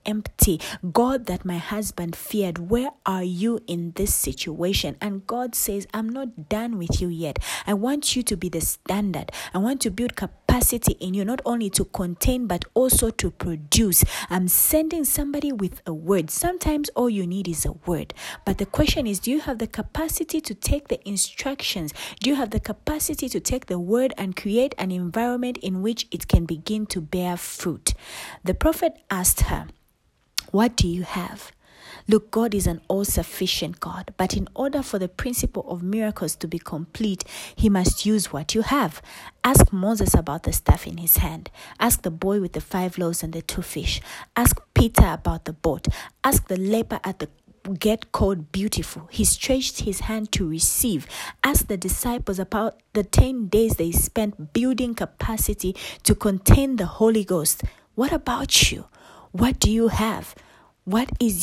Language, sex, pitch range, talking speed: English, female, 180-240 Hz, 180 wpm